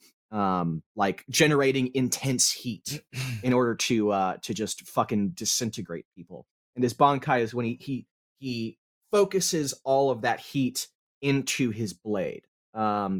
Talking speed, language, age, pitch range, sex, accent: 140 wpm, English, 30-49, 115-140 Hz, male, American